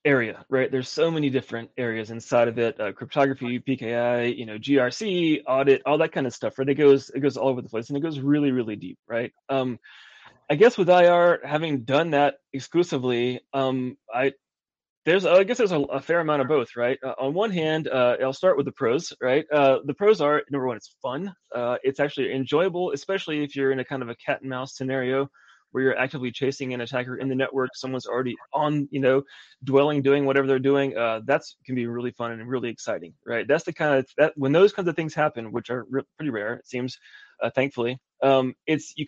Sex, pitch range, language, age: male, 125-150 Hz, English, 20-39